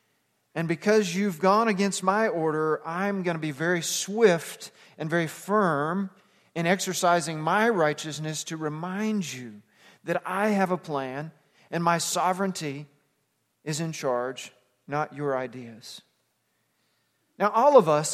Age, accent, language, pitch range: 40-59, American, English, 155-205 Hz